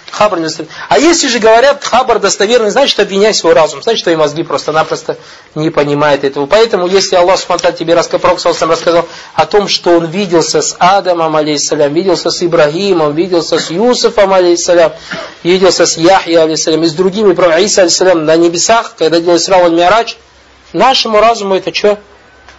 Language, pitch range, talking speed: Russian, 155-210 Hz, 145 wpm